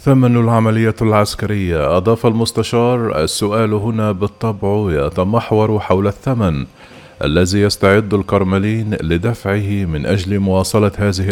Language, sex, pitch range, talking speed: Arabic, male, 100-115 Hz, 100 wpm